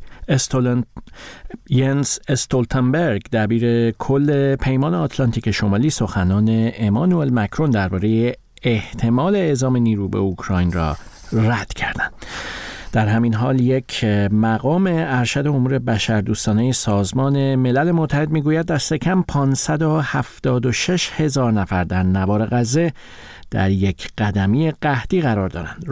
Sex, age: male, 50-69